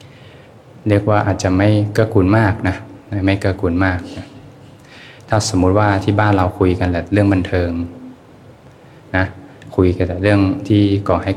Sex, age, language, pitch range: male, 20-39, Thai, 90-110 Hz